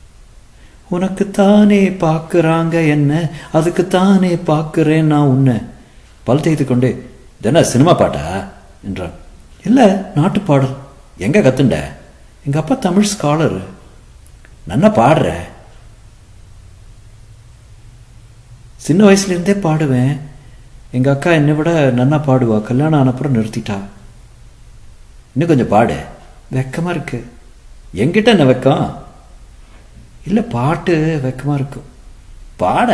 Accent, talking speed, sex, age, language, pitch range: native, 95 wpm, male, 60-79, Tamil, 115-155 Hz